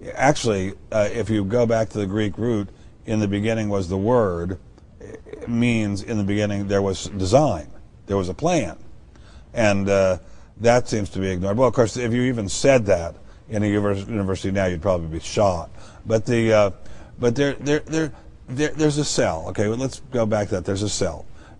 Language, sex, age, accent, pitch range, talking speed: English, male, 50-69, American, 100-130 Hz, 200 wpm